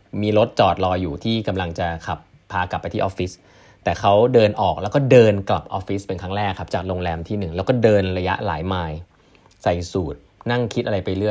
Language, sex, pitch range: Thai, male, 90-120 Hz